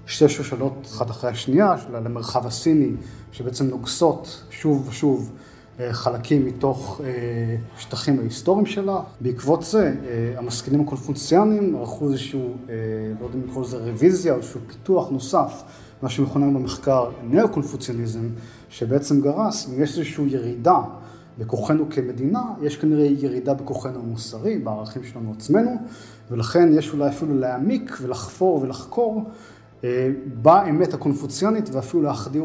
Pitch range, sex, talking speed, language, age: 120-155 Hz, male, 125 wpm, Hebrew, 30-49